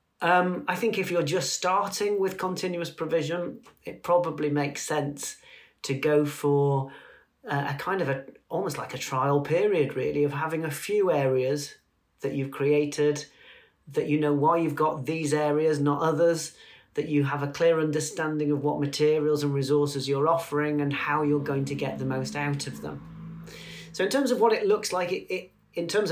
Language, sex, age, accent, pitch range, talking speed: English, male, 40-59, British, 145-180 Hz, 190 wpm